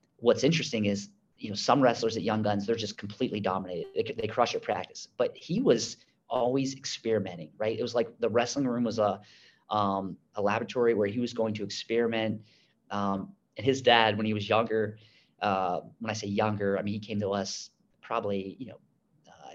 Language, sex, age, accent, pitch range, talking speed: English, male, 30-49, American, 100-115 Hz, 200 wpm